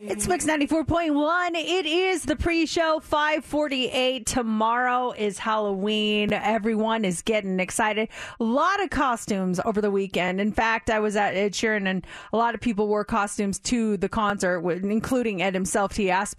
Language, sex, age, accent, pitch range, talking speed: English, female, 30-49, American, 210-315 Hz, 160 wpm